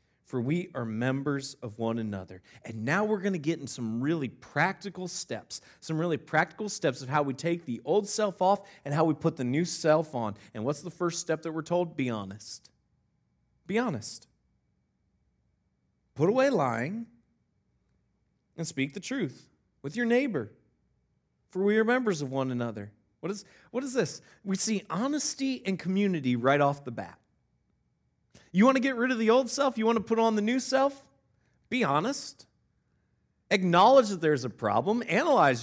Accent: American